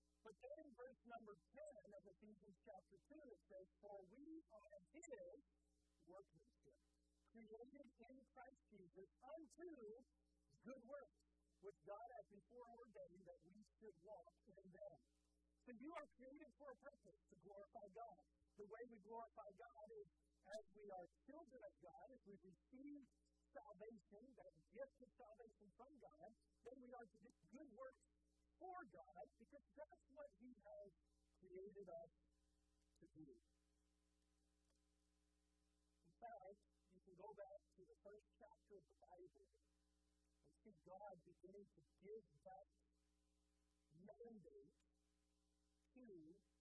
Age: 50-69